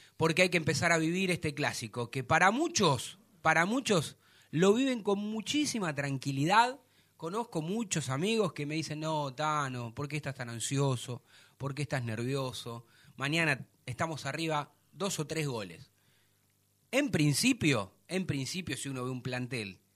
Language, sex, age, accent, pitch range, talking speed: Spanish, male, 30-49, Argentinian, 125-165 Hz, 155 wpm